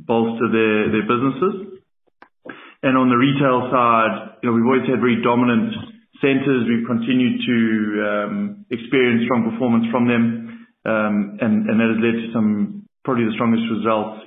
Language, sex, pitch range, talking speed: English, male, 115-135 Hz, 160 wpm